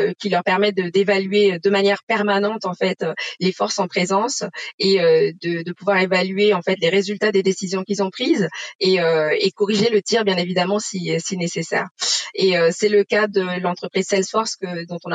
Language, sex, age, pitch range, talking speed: French, female, 20-39, 175-205 Hz, 200 wpm